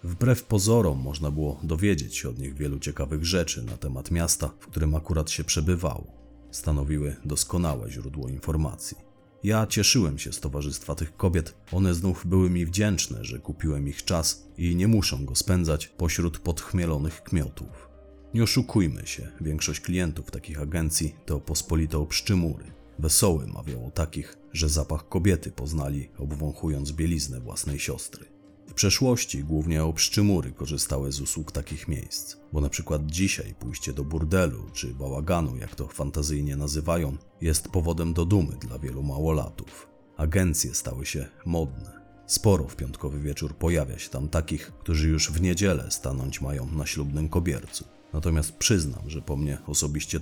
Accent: native